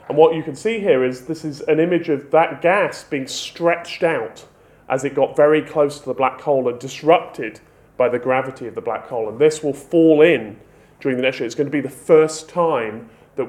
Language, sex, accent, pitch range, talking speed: English, male, British, 135-170 Hz, 230 wpm